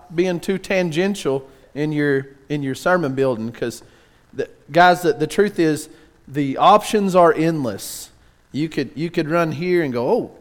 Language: English